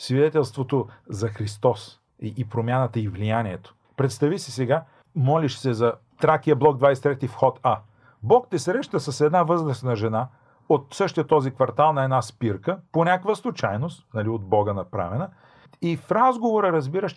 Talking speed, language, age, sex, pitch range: 150 wpm, Bulgarian, 40-59, male, 120-150 Hz